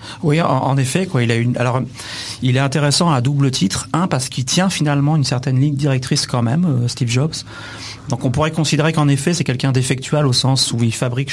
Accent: French